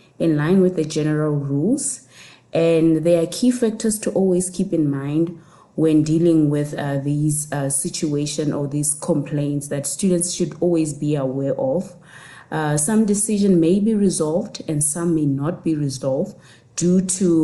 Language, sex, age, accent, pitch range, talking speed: English, female, 20-39, South African, 145-180 Hz, 160 wpm